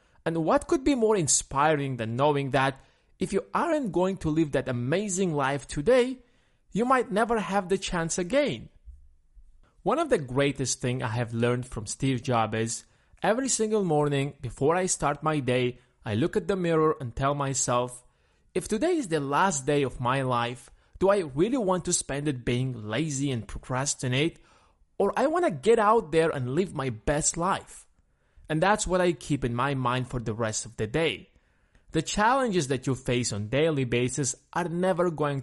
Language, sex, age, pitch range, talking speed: English, male, 30-49, 125-190 Hz, 190 wpm